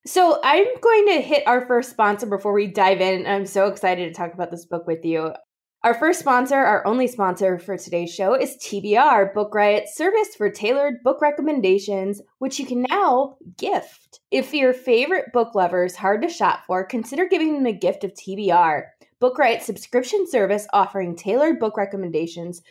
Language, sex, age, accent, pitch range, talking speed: English, female, 20-39, American, 190-275 Hz, 190 wpm